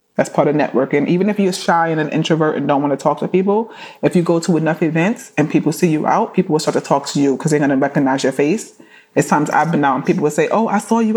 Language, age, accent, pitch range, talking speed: English, 30-49, American, 155-190 Hz, 300 wpm